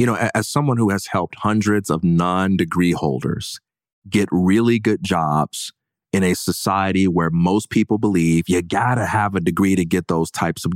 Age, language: 30-49, English